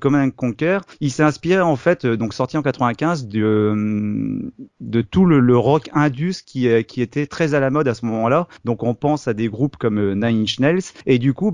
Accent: French